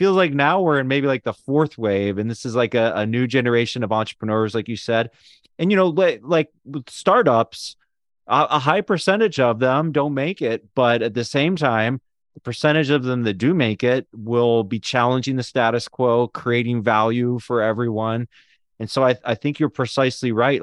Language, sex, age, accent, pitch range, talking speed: English, male, 30-49, American, 110-135 Hz, 205 wpm